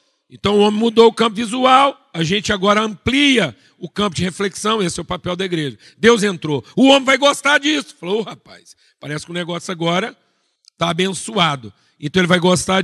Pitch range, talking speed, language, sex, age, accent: 170-245 Hz, 190 wpm, Portuguese, male, 50-69, Brazilian